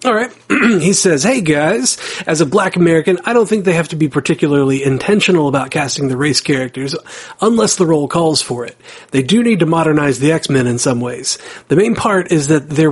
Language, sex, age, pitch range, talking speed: English, male, 40-59, 135-175 Hz, 210 wpm